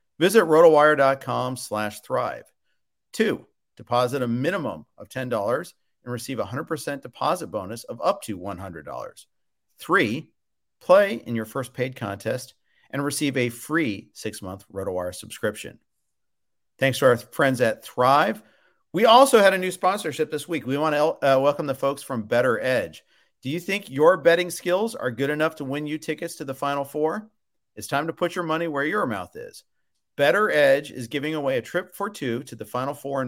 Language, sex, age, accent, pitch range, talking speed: English, male, 50-69, American, 120-160 Hz, 180 wpm